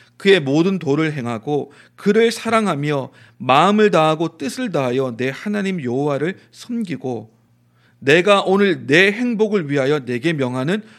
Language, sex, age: Korean, male, 40-59